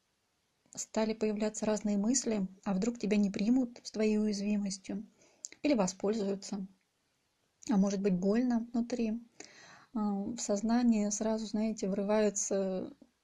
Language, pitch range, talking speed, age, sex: Russian, 205-235 Hz, 110 wpm, 30-49, female